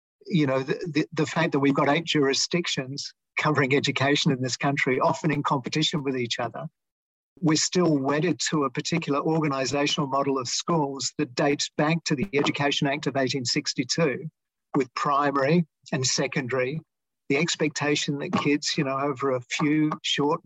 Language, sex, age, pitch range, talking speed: English, male, 50-69, 135-160 Hz, 160 wpm